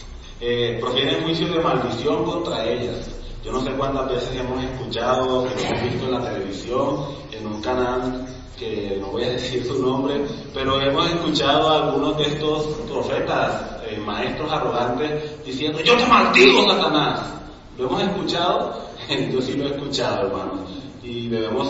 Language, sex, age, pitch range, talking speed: Spanish, male, 30-49, 120-150 Hz, 160 wpm